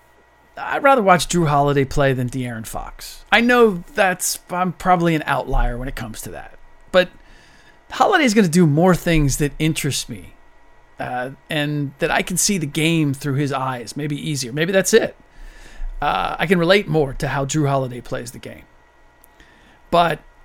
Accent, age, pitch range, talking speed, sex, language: American, 40-59, 135-180 Hz, 175 wpm, male, English